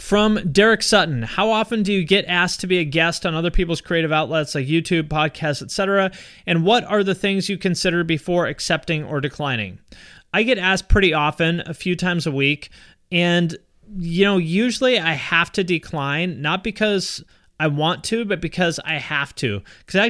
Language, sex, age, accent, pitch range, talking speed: English, male, 30-49, American, 150-185 Hz, 185 wpm